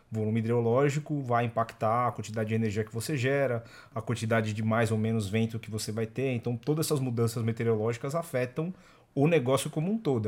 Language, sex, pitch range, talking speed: Portuguese, male, 110-135 Hz, 195 wpm